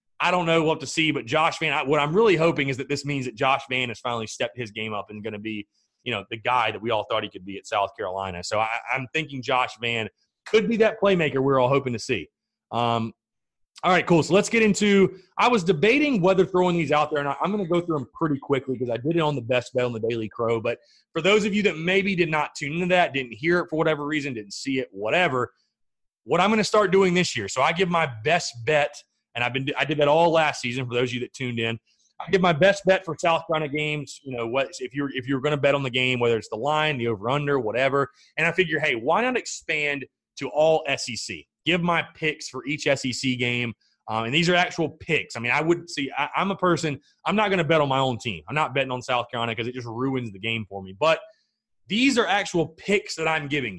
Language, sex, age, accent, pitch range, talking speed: English, male, 30-49, American, 125-170 Hz, 270 wpm